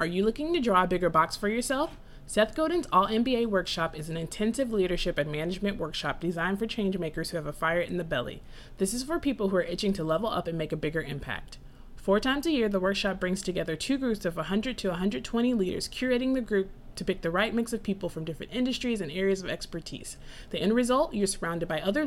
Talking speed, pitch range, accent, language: 235 wpm, 170-225 Hz, American, English